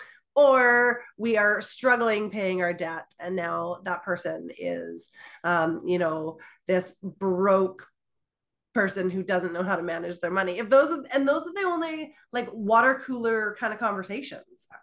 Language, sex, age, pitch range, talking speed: English, female, 30-49, 180-245 Hz, 160 wpm